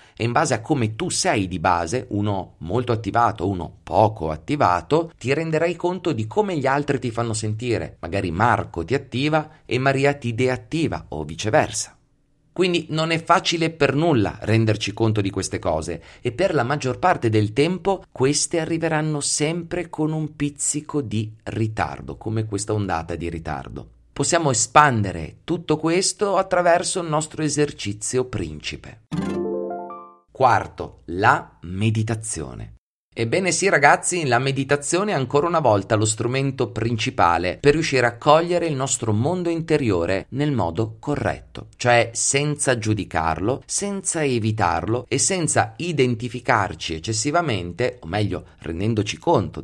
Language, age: Italian, 30-49